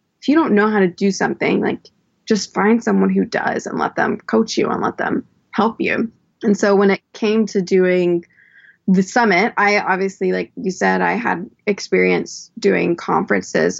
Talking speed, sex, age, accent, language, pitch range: 185 wpm, female, 20-39, American, English, 185-210 Hz